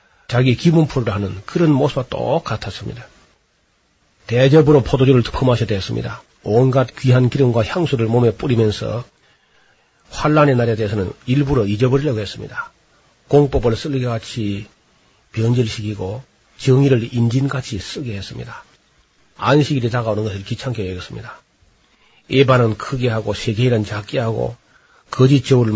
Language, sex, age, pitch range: Korean, male, 40-59, 105-135 Hz